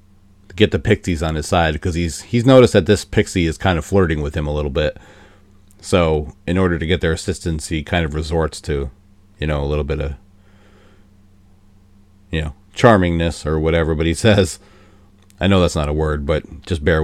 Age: 40-59